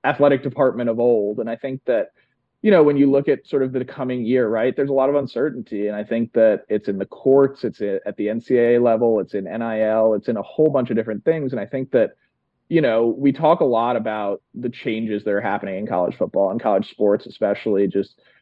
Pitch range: 110-135 Hz